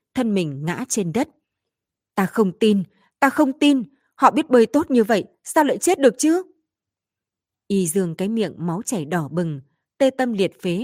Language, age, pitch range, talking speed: Vietnamese, 20-39, 170-235 Hz, 190 wpm